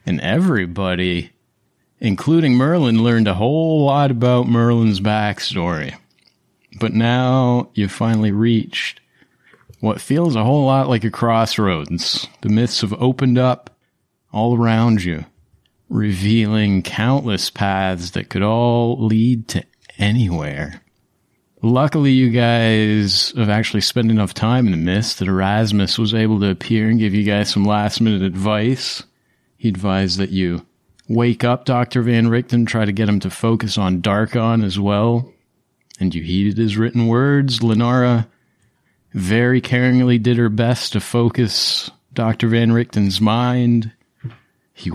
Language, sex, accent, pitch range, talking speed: English, male, American, 100-120 Hz, 140 wpm